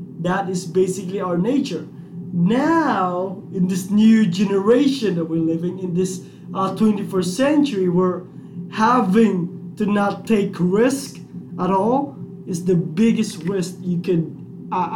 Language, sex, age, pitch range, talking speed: English, male, 20-39, 175-220 Hz, 130 wpm